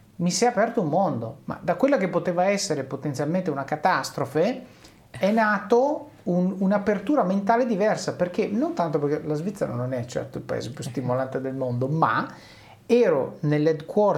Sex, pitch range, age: male, 135-205 Hz, 40-59